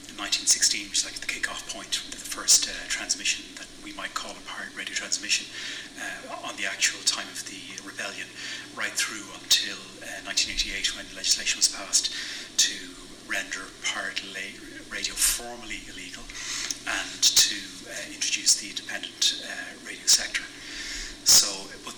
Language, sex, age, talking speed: English, male, 30-49, 145 wpm